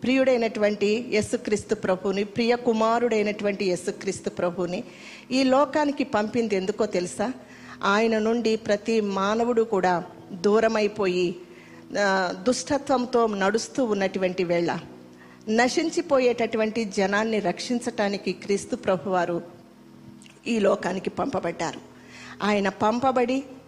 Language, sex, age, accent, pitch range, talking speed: Telugu, female, 50-69, native, 195-245 Hz, 90 wpm